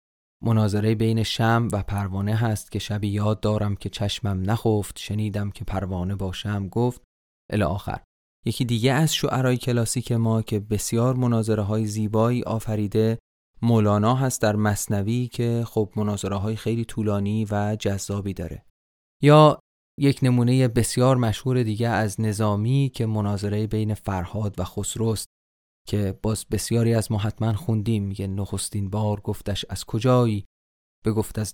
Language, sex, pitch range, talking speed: Persian, male, 100-115 Hz, 135 wpm